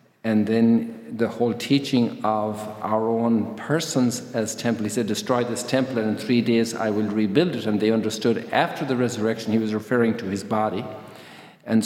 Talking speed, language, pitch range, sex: 185 wpm, English, 110-130 Hz, male